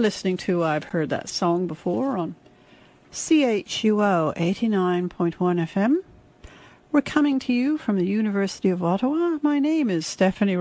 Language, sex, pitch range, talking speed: English, female, 175-240 Hz, 135 wpm